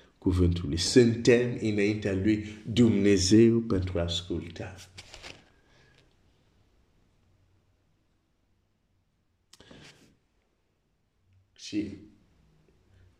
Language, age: Romanian, 50-69